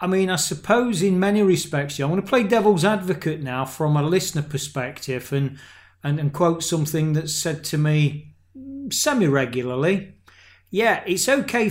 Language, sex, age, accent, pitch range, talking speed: English, male, 40-59, British, 140-190 Hz, 160 wpm